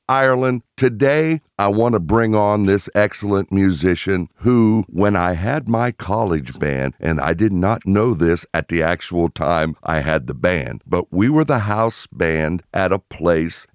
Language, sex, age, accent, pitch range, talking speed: English, male, 60-79, American, 85-110 Hz, 175 wpm